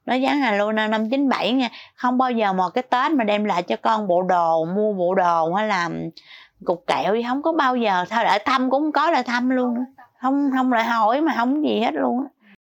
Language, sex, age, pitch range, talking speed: Vietnamese, female, 20-39, 190-260 Hz, 245 wpm